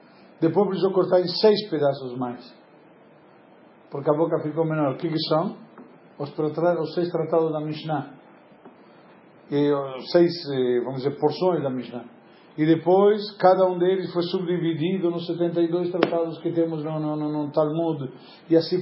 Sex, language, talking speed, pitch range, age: male, Portuguese, 160 wpm, 150-185 Hz, 50-69